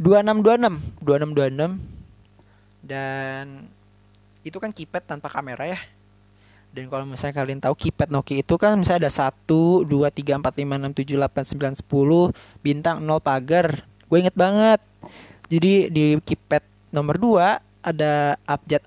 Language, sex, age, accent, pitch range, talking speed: Indonesian, male, 20-39, native, 120-160 Hz, 135 wpm